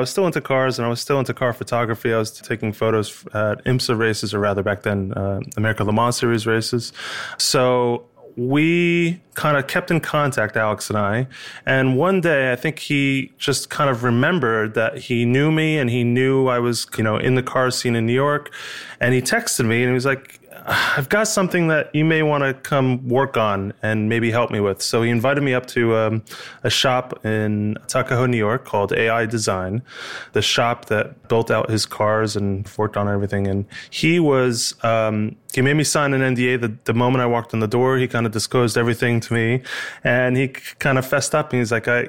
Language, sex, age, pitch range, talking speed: English, male, 20-39, 115-135 Hz, 220 wpm